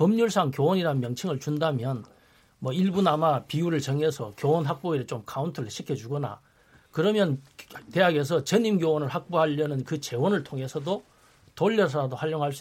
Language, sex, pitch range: Korean, male, 135-175 Hz